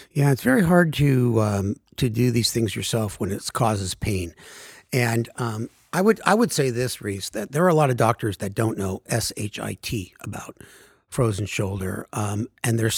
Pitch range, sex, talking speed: 105-135 Hz, male, 205 wpm